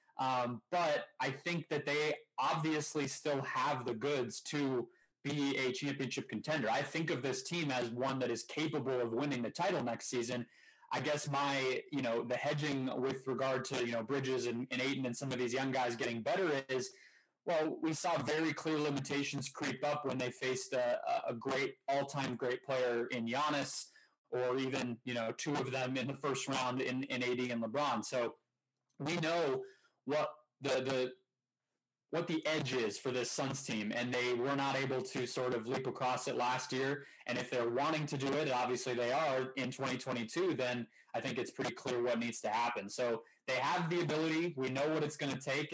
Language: English